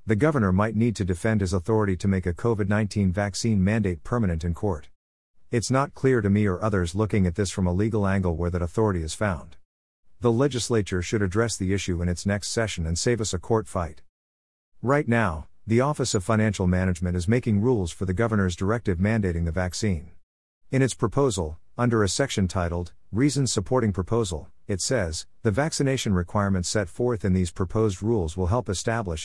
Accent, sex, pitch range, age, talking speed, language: American, male, 90-115 Hz, 50-69, 190 wpm, English